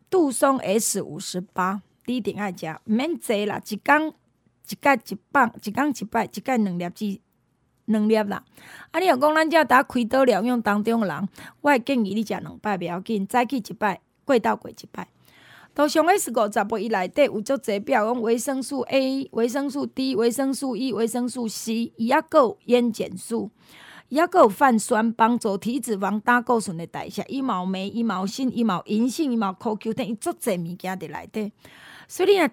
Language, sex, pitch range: Chinese, female, 205-270 Hz